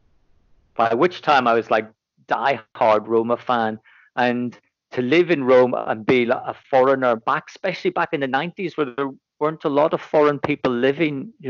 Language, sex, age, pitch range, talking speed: Persian, male, 40-59, 115-140 Hz, 185 wpm